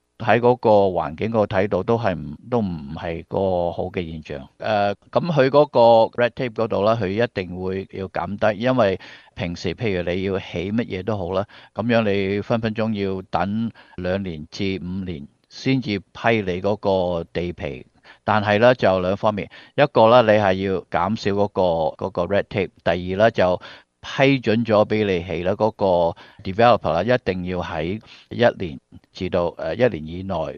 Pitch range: 90-110 Hz